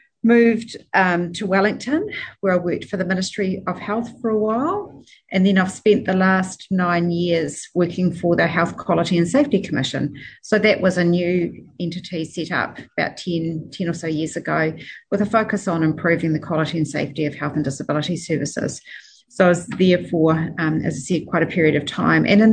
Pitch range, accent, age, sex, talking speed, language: 160-190 Hz, Australian, 40-59, female, 200 wpm, English